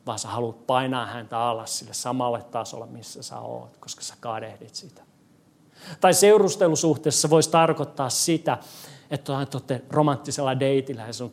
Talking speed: 145 wpm